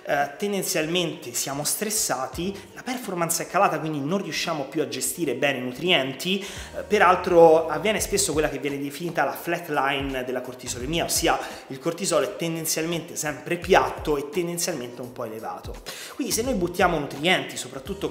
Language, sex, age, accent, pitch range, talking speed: Italian, male, 30-49, native, 135-180 Hz, 150 wpm